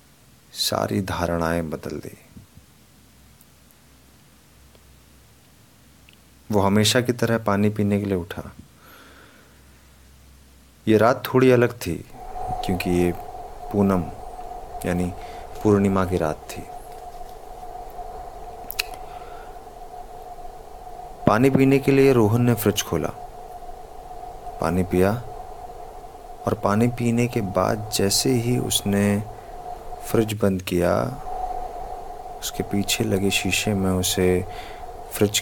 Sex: male